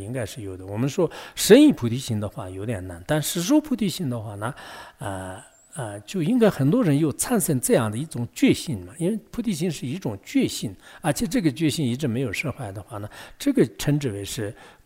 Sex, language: male, English